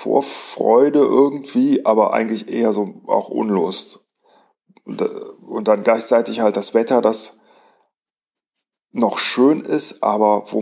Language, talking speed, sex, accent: German, 125 wpm, male, German